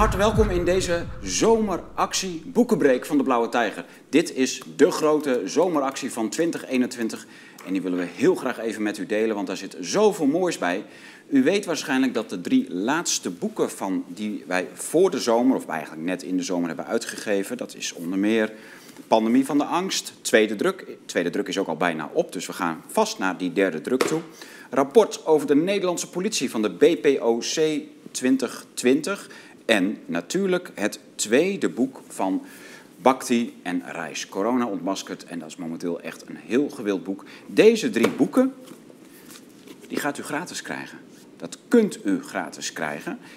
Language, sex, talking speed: Dutch, male, 170 wpm